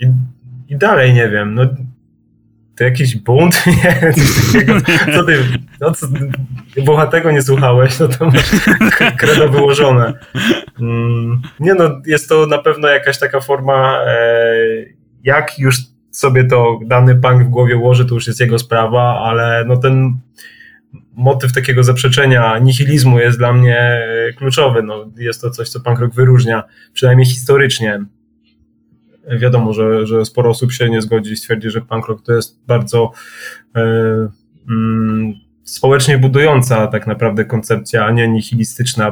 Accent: native